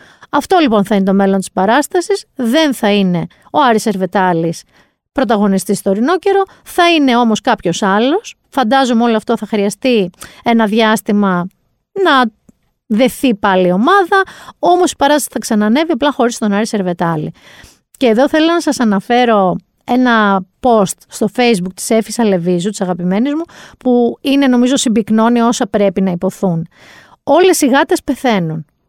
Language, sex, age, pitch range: Greek, female, 40-59, 200-265 Hz